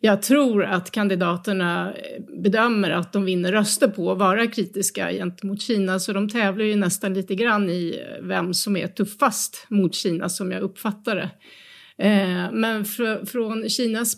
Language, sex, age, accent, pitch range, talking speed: Swedish, female, 30-49, native, 190-225 Hz, 155 wpm